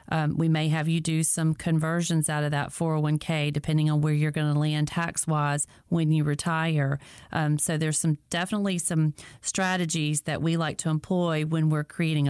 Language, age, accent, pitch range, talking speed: English, 40-59, American, 150-165 Hz, 190 wpm